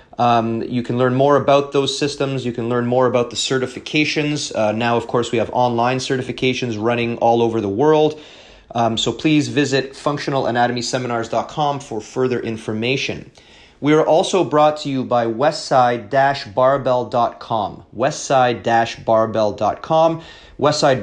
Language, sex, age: English, male, 30-49